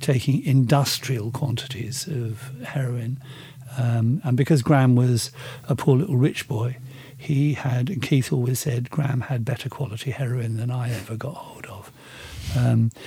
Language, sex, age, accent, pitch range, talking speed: English, male, 50-69, British, 125-145 Hz, 150 wpm